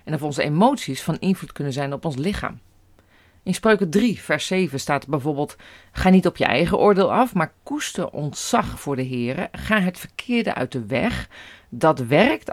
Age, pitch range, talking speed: 40-59, 130-195 Hz, 185 wpm